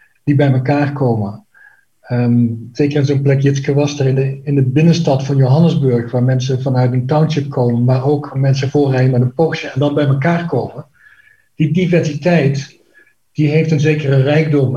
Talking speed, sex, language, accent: 180 wpm, male, Dutch, Dutch